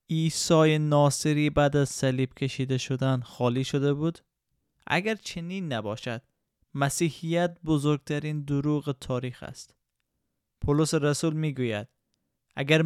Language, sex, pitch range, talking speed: Persian, male, 130-155 Hz, 105 wpm